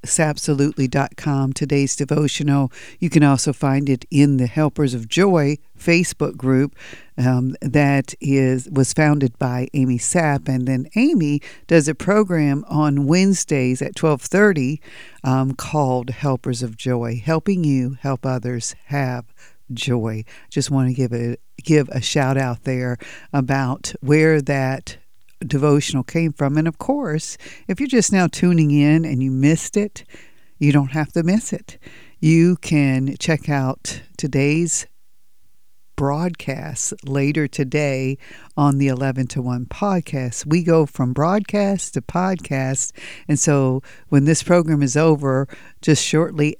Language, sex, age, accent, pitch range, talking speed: English, female, 50-69, American, 130-160 Hz, 140 wpm